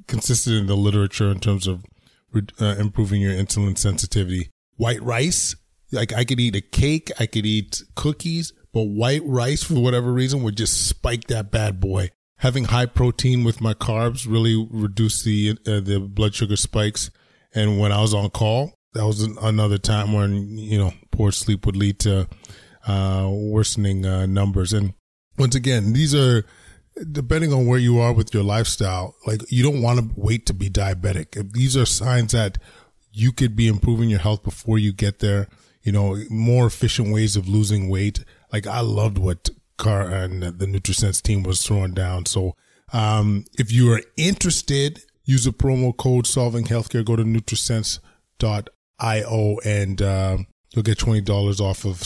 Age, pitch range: 20-39, 100-120 Hz